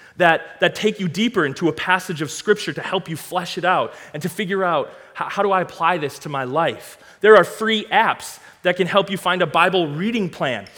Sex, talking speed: male, 235 wpm